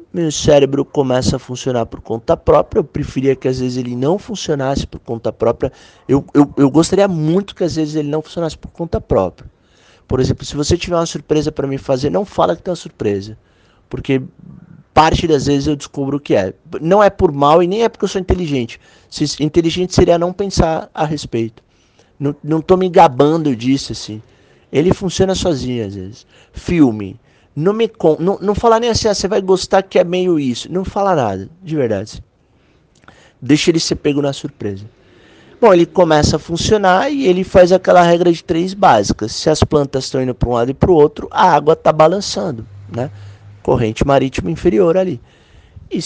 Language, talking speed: Portuguese, 195 wpm